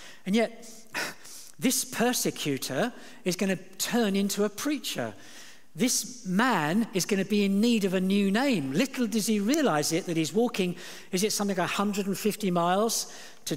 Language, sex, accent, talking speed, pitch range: English, male, British, 170 wpm, 160-215 Hz